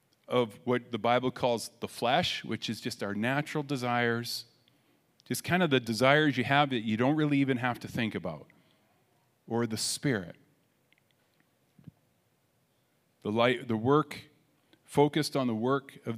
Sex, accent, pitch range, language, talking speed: male, American, 110-150 Hz, English, 150 wpm